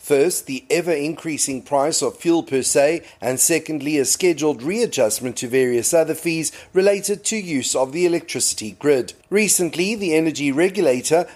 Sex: male